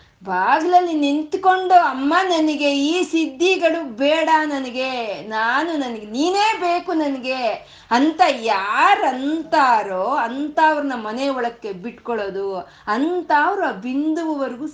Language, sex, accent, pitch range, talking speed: Kannada, female, native, 225-310 Hz, 90 wpm